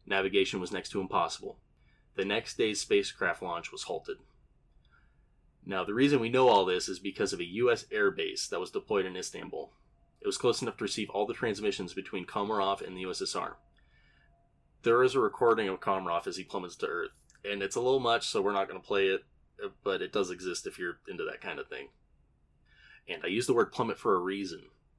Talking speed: 210 wpm